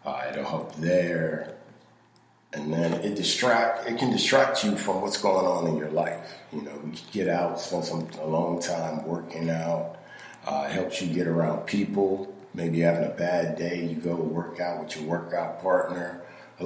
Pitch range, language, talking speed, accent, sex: 80-95 Hz, English, 190 wpm, American, male